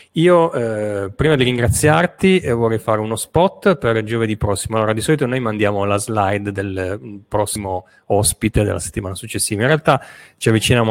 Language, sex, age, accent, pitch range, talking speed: Italian, male, 30-49, native, 100-125 Hz, 165 wpm